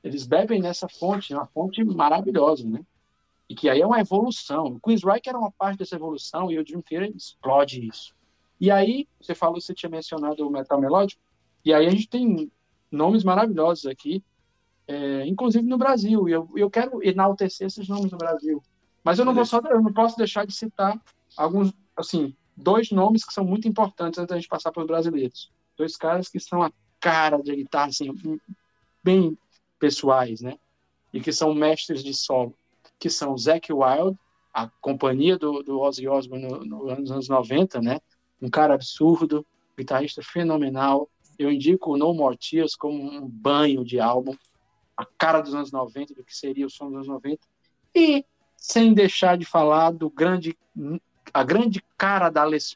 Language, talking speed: Portuguese, 180 wpm